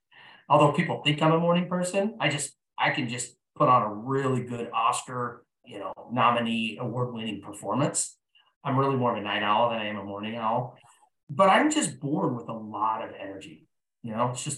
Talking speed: 205 wpm